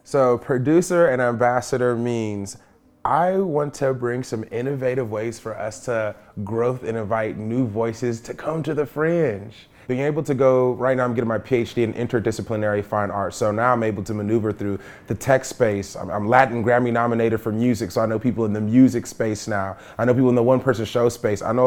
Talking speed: 210 wpm